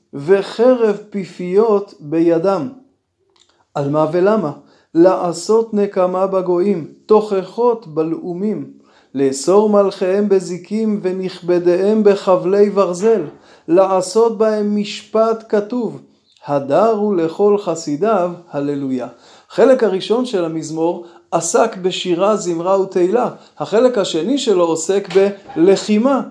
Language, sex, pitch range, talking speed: Hebrew, male, 175-220 Hz, 85 wpm